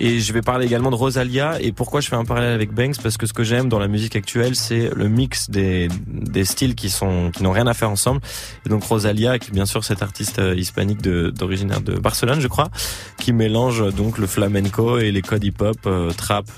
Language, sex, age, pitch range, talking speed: French, male, 20-39, 100-125 Hz, 240 wpm